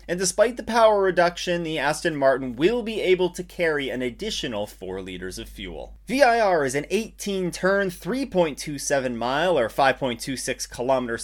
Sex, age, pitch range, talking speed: male, 30-49, 140-210 Hz, 140 wpm